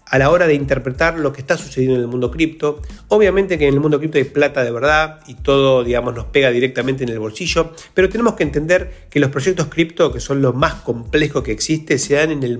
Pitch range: 125-165 Hz